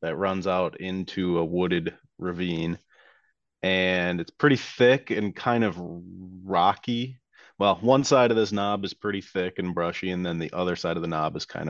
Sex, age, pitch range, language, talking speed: male, 30-49, 85-100 Hz, English, 185 wpm